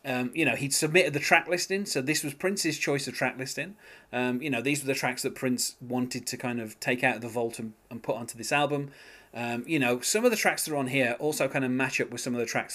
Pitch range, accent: 120-150 Hz, British